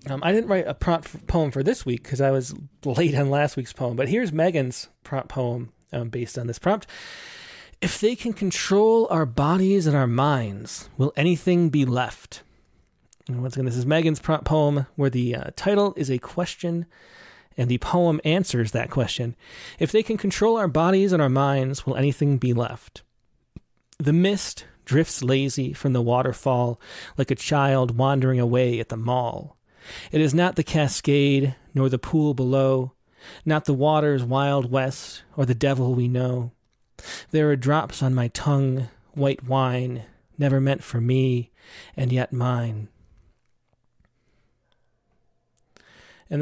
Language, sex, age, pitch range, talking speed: English, male, 30-49, 125-160 Hz, 165 wpm